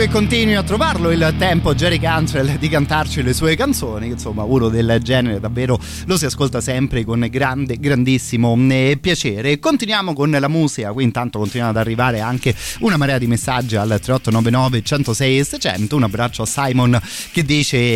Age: 30-49